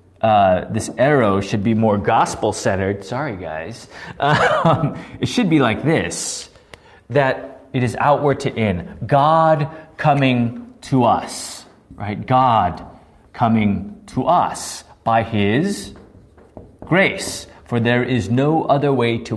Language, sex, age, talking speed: English, male, 30-49, 125 wpm